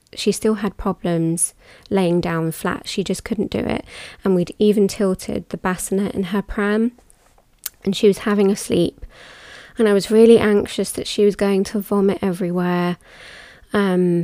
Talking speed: 170 wpm